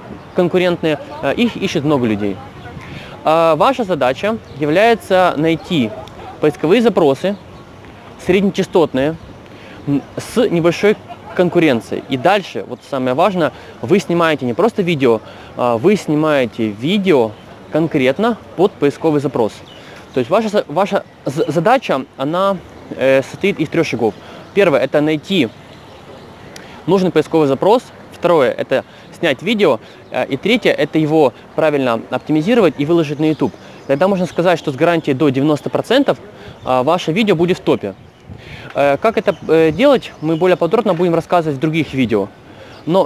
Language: Russian